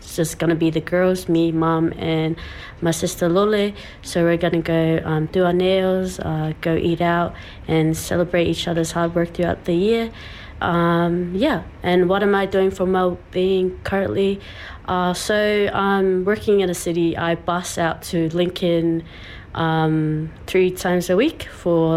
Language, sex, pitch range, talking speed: English, female, 160-185 Hz, 175 wpm